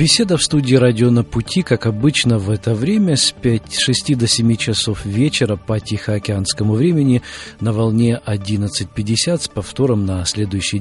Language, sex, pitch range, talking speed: Russian, male, 105-125 Hz, 155 wpm